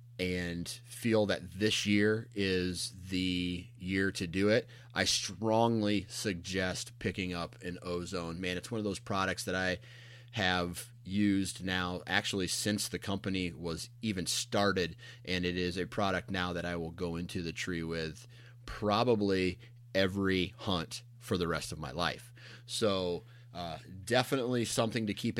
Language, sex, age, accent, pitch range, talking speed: English, male, 30-49, American, 95-120 Hz, 155 wpm